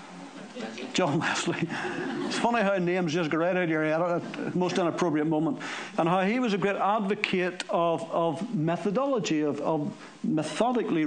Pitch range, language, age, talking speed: 170-230 Hz, English, 60-79, 165 wpm